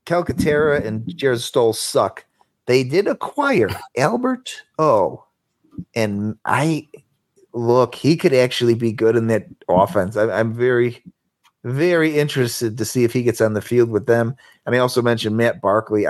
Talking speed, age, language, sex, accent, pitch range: 155 wpm, 30-49, English, male, American, 105-125 Hz